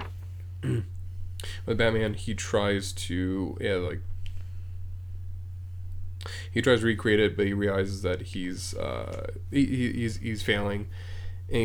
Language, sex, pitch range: English, male, 90-110 Hz